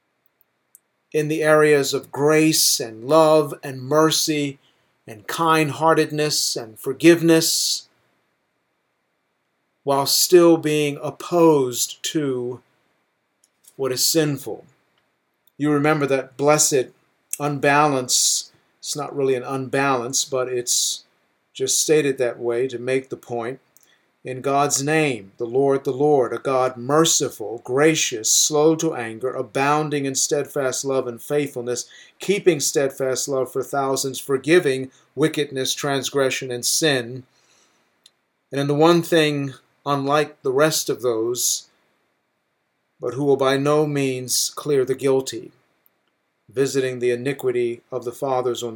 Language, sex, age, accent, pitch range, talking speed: English, male, 50-69, American, 130-150 Hz, 120 wpm